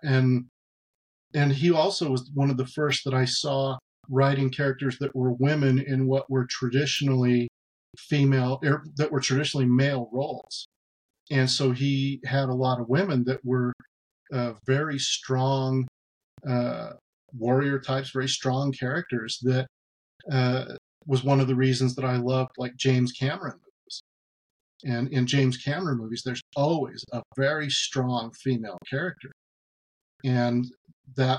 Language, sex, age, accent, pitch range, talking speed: English, male, 40-59, American, 125-140 Hz, 140 wpm